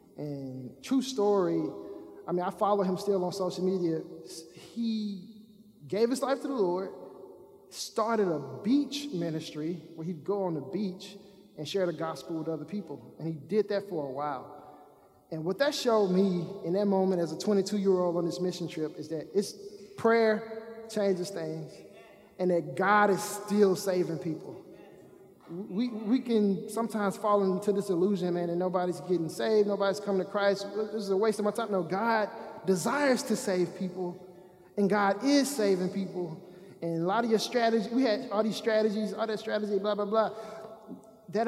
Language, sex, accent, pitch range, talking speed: English, male, American, 180-215 Hz, 180 wpm